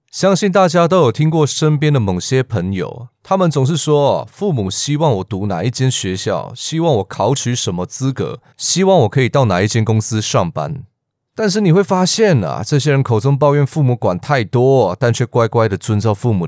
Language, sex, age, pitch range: Chinese, male, 30-49, 105-145 Hz